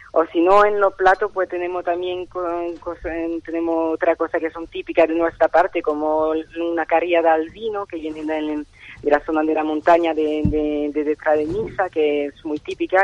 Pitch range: 155-180 Hz